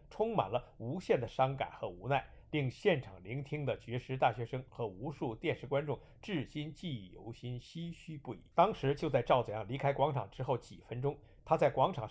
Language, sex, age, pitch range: Chinese, male, 50-69, 120-155 Hz